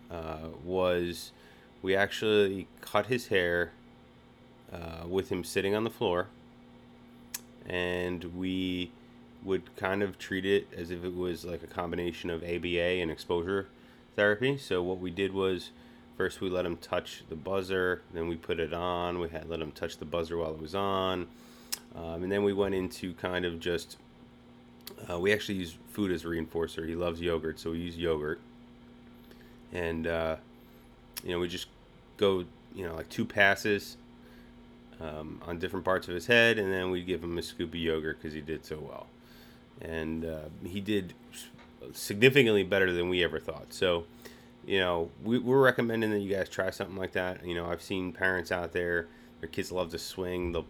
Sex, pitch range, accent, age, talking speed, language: male, 80-95 Hz, American, 30-49, 180 wpm, English